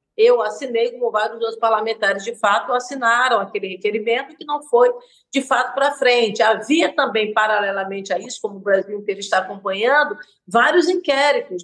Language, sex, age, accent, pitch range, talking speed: Portuguese, female, 50-69, Brazilian, 220-295 Hz, 155 wpm